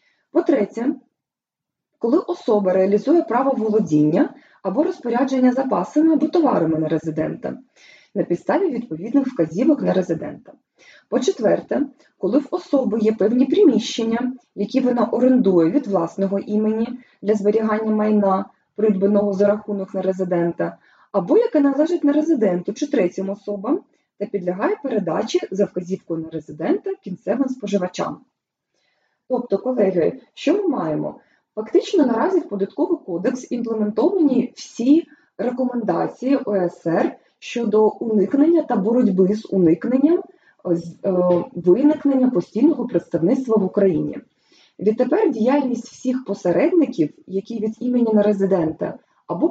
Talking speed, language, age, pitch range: 115 wpm, Ukrainian, 20-39, 195-285 Hz